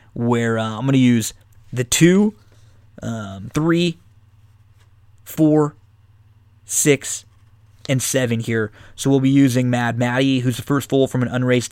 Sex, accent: male, American